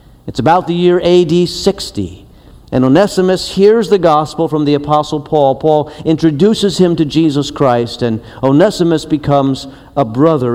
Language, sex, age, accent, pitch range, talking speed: English, male, 50-69, American, 140-175 Hz, 150 wpm